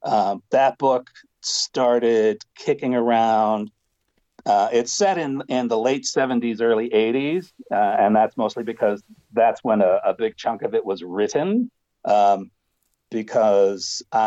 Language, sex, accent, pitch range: English, male, American, 105-125 Hz